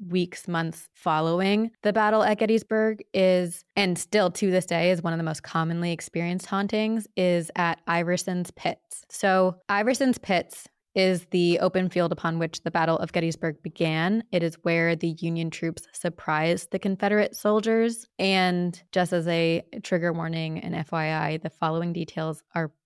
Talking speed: 160 wpm